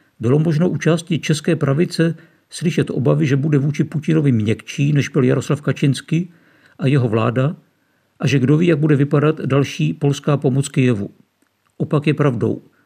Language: Czech